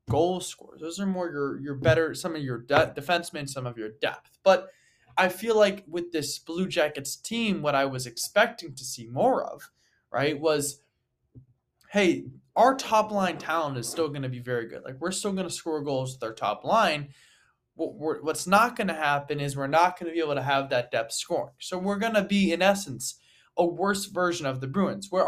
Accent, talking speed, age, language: American, 220 wpm, 20-39, English